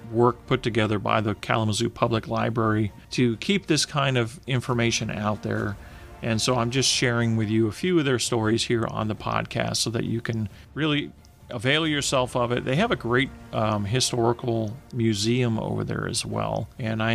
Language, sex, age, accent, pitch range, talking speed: English, male, 40-59, American, 110-135 Hz, 190 wpm